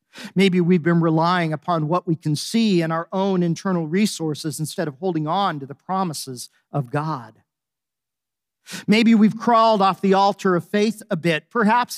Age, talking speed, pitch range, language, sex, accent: 50-69, 170 wpm, 140-180 Hz, English, male, American